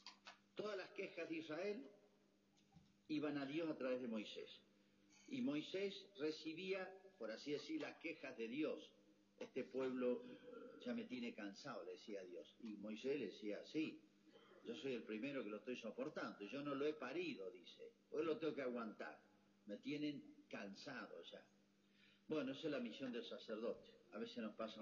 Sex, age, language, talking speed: male, 50-69, Spanish, 170 wpm